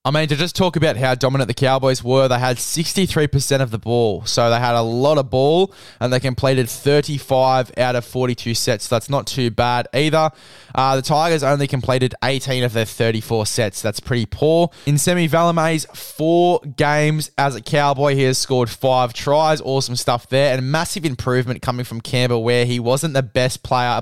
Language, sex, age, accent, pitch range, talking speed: English, male, 20-39, Australian, 115-140 Hz, 195 wpm